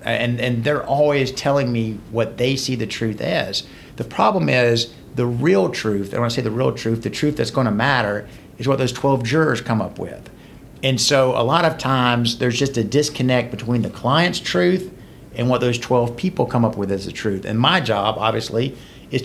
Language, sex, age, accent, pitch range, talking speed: English, male, 50-69, American, 110-135 Hz, 215 wpm